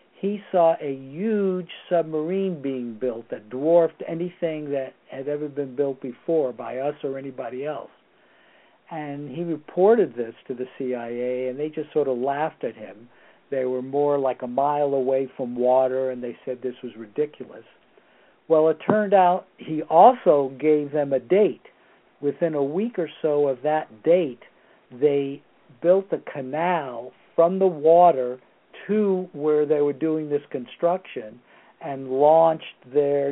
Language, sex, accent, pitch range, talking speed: English, male, American, 130-170 Hz, 155 wpm